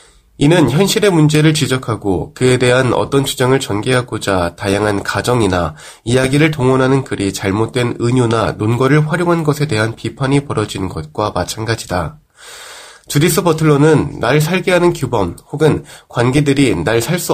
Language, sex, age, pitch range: Korean, male, 20-39, 105-150 Hz